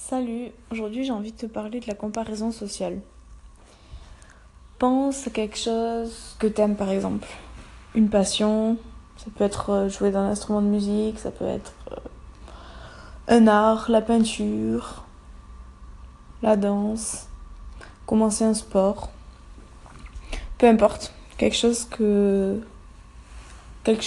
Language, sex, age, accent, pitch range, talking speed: English, female, 20-39, French, 195-225 Hz, 120 wpm